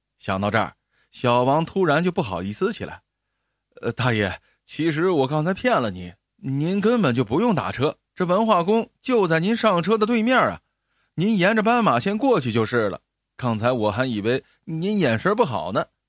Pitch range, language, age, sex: 115-160 Hz, Chinese, 20-39, male